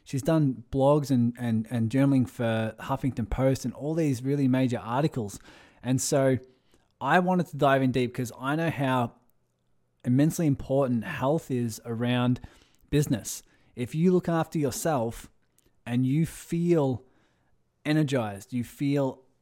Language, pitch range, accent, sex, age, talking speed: English, 120-145 Hz, Australian, male, 20-39, 140 wpm